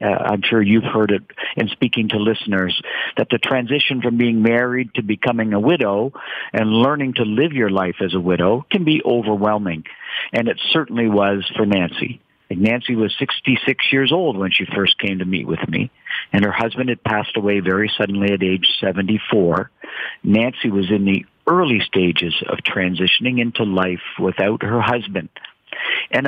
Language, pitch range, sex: English, 95-125 Hz, male